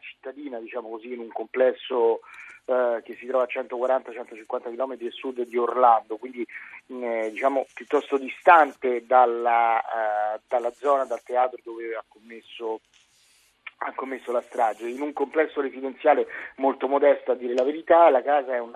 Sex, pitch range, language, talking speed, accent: male, 120-155 Hz, Italian, 155 wpm, native